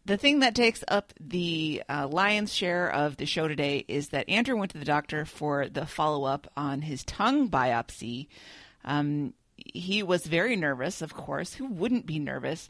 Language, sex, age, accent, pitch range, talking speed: English, female, 30-49, American, 145-180 Hz, 195 wpm